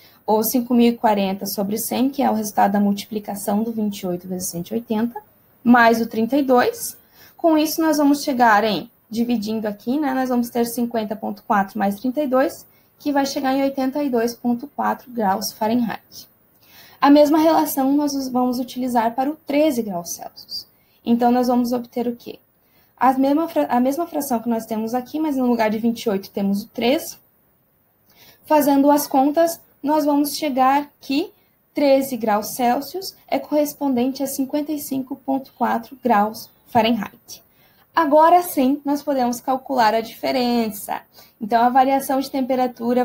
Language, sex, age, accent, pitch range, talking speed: Portuguese, female, 10-29, Brazilian, 220-275 Hz, 140 wpm